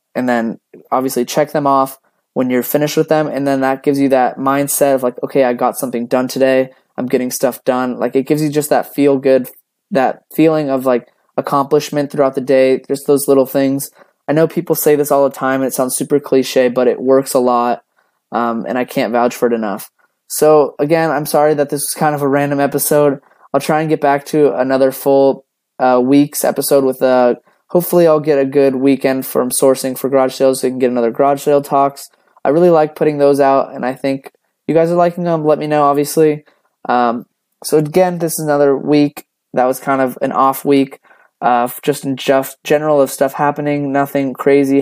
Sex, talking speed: male, 215 wpm